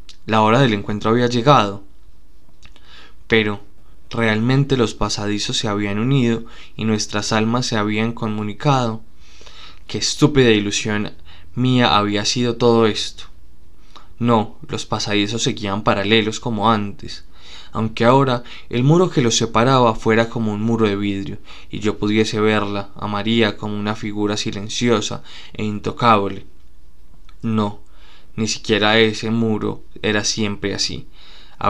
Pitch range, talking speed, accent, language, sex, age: 105-115 Hz, 130 wpm, Colombian, Spanish, male, 20-39